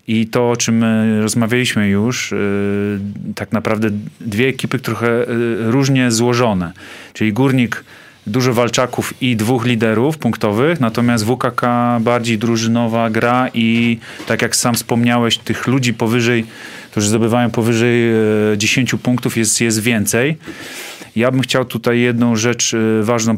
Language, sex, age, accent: Polish, male, 30-49, native